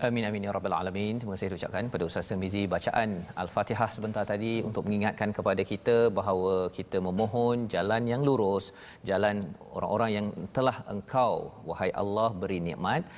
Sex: male